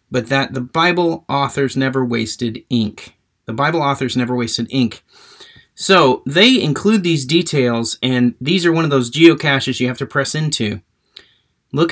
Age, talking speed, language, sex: 30-49, 160 wpm, English, male